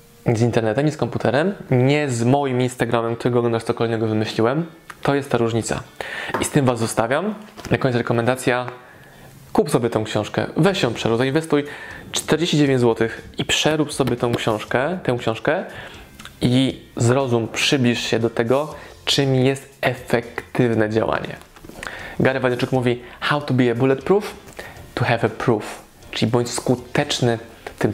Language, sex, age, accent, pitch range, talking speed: Polish, male, 20-39, native, 115-135 Hz, 145 wpm